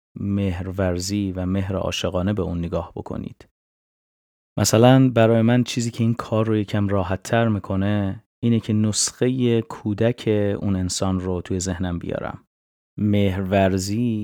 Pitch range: 90-105 Hz